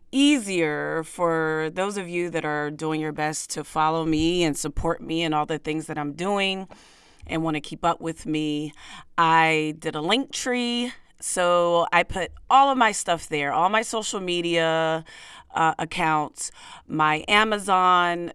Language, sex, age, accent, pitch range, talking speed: English, female, 30-49, American, 155-195 Hz, 165 wpm